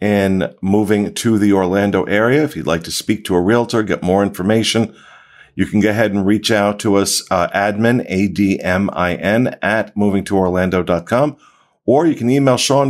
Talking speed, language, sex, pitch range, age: 165 wpm, English, male, 95-120 Hz, 50-69